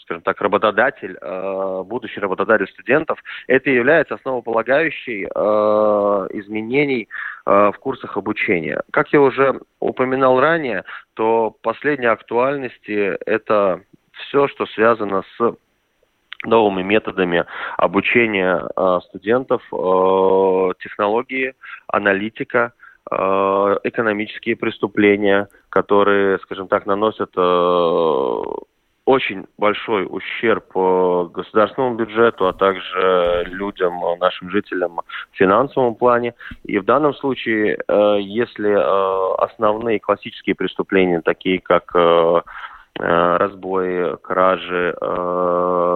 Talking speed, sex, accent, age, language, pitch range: 80 wpm, male, native, 20-39, Russian, 95-115 Hz